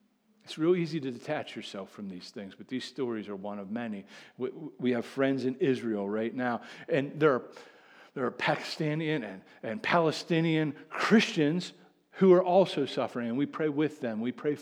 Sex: male